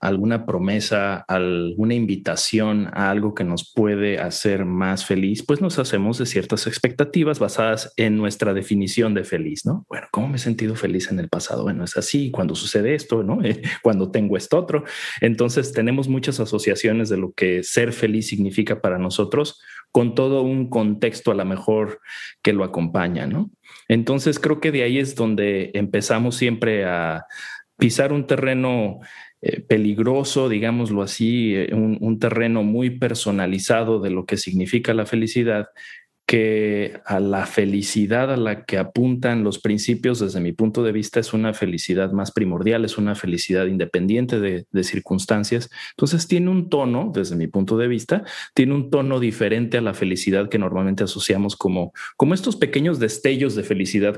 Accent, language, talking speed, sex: Mexican, Spanish, 165 wpm, male